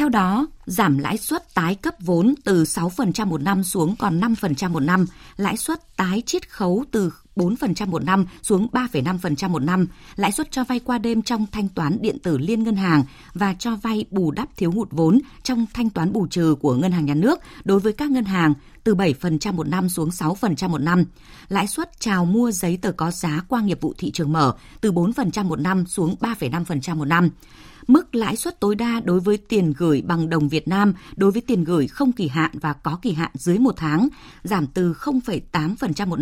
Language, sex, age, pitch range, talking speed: Vietnamese, female, 20-39, 165-220 Hz, 210 wpm